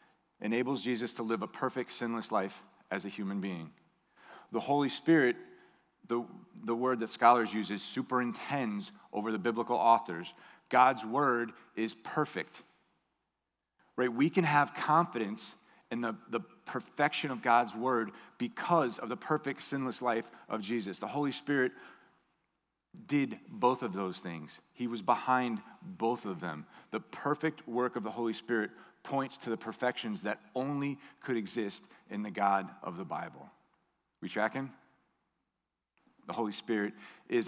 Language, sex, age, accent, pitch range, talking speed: English, male, 40-59, American, 110-145 Hz, 145 wpm